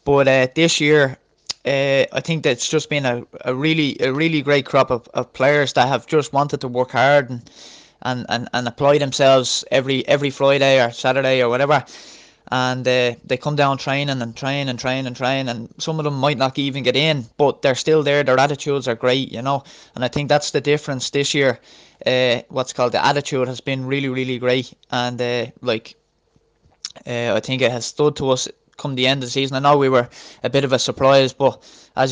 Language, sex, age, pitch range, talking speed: English, male, 20-39, 125-145 Hz, 220 wpm